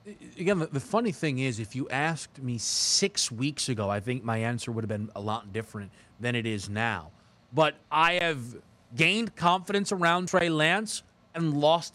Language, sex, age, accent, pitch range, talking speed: English, male, 30-49, American, 125-190 Hz, 180 wpm